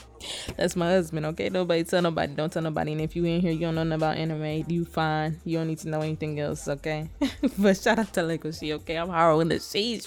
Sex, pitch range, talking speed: female, 155-200 Hz, 245 wpm